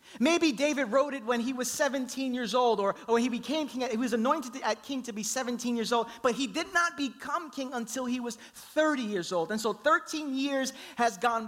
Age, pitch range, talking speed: 30-49, 235-290 Hz, 230 wpm